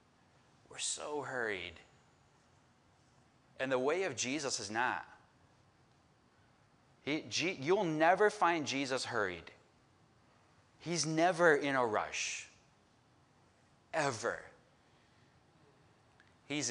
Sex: male